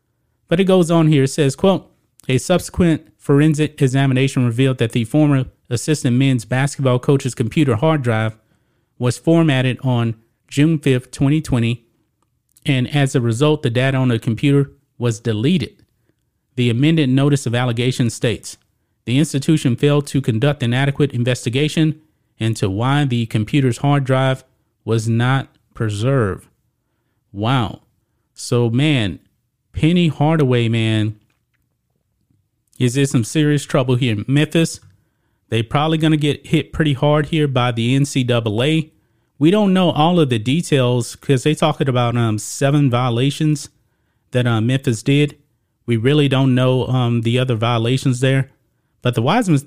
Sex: male